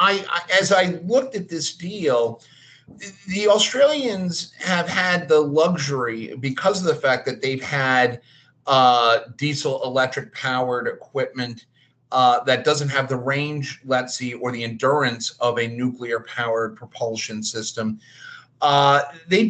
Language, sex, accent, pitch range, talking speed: English, male, American, 130-170 Hz, 130 wpm